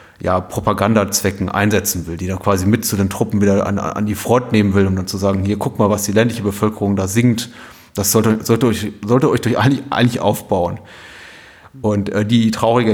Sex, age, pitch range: male, 30-49, 100-110 Hz